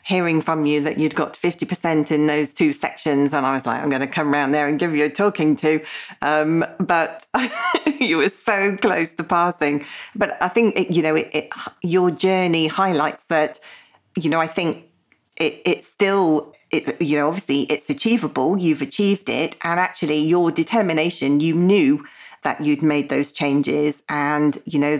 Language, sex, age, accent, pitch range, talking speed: English, female, 40-59, British, 145-175 Hz, 175 wpm